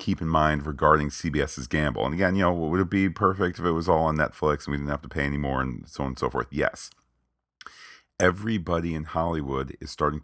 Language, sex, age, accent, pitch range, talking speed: English, male, 40-59, American, 70-85 Hz, 230 wpm